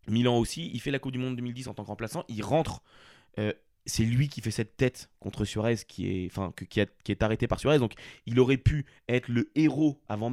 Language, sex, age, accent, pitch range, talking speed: French, male, 20-39, French, 105-125 Hz, 250 wpm